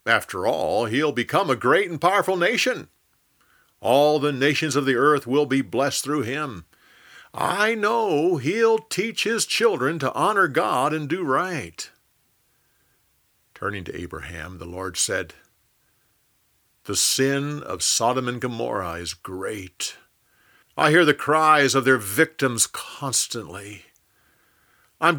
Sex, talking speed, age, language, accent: male, 130 wpm, 50-69, English, American